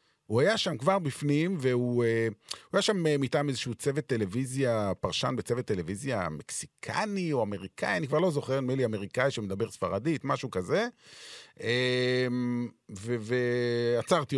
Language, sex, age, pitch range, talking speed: Hebrew, male, 30-49, 110-140 Hz, 125 wpm